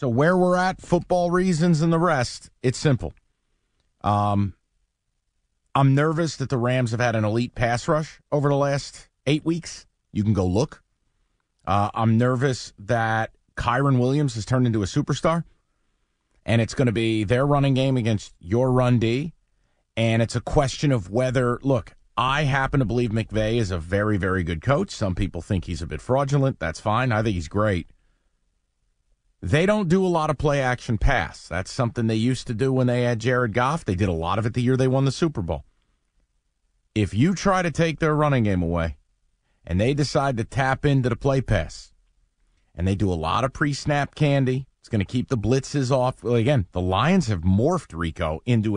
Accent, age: American, 40-59